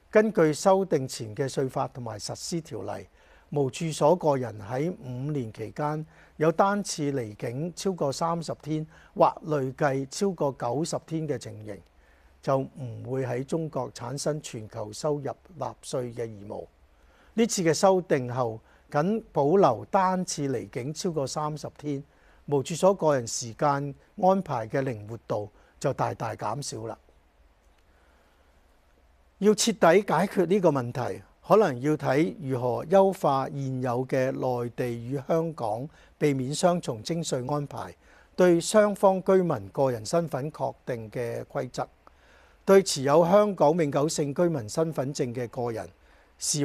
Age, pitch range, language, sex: 60-79, 115-165 Hz, Chinese, male